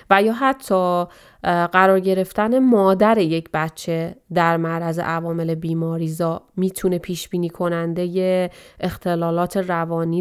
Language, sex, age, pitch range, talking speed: Persian, female, 30-49, 170-195 Hz, 105 wpm